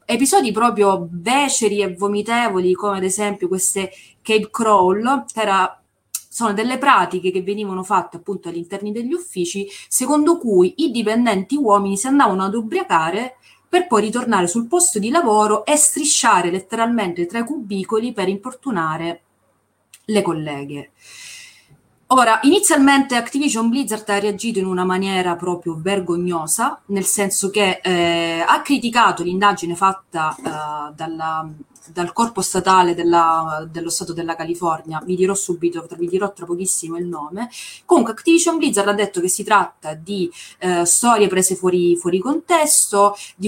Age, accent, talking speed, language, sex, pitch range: 30-49, native, 135 wpm, Italian, female, 180-230 Hz